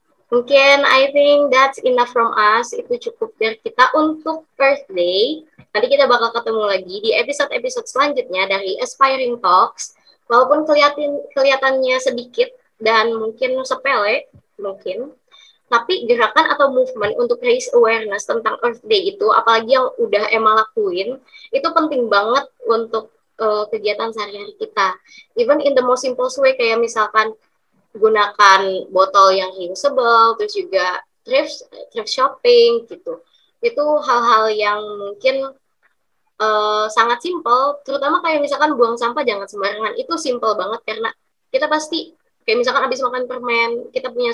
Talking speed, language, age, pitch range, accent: 135 wpm, Indonesian, 20-39, 220-310 Hz, native